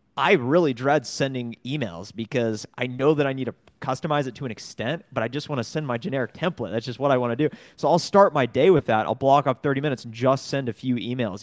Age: 30-49